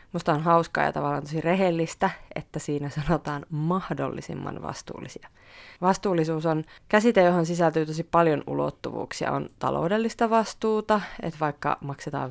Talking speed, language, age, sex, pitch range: 125 wpm, Finnish, 30-49, female, 150-185 Hz